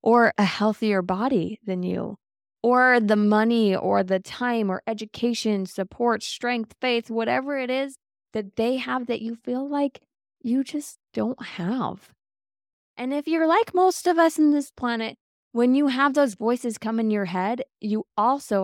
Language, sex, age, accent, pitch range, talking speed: English, female, 20-39, American, 195-260 Hz, 165 wpm